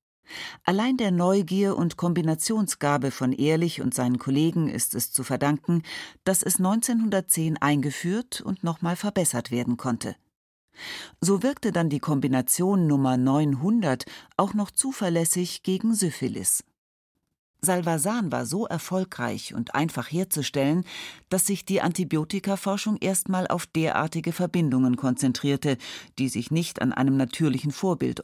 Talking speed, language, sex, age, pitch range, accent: 125 wpm, German, female, 40-59, 135-190 Hz, German